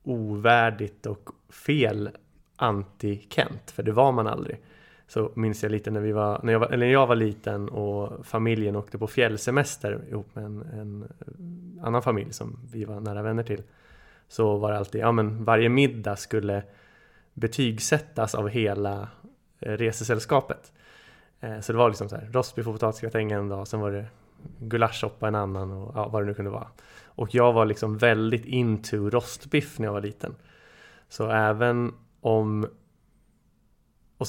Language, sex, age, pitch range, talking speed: Swedish, male, 20-39, 105-120 Hz, 165 wpm